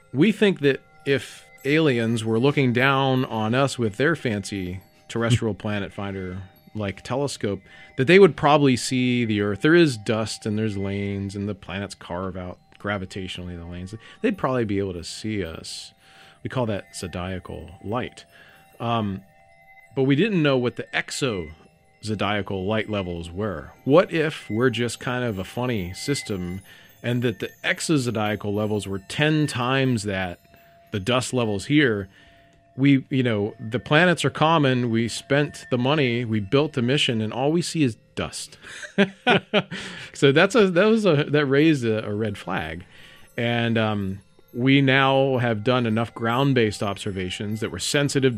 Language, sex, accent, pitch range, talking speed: English, male, American, 100-135 Hz, 160 wpm